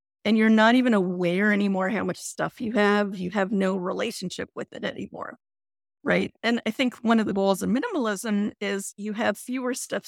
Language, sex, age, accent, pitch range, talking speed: English, female, 40-59, American, 190-245 Hz, 195 wpm